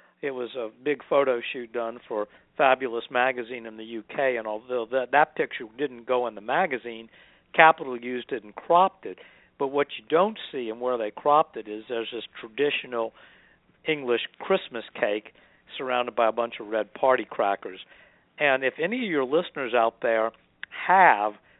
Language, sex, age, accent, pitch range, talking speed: English, male, 60-79, American, 115-140 Hz, 175 wpm